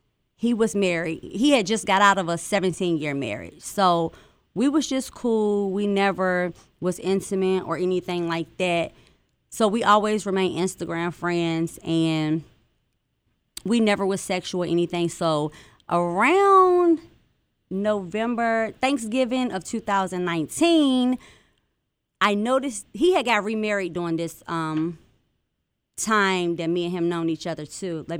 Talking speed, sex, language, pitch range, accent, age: 135 wpm, female, English, 170-215 Hz, American, 20-39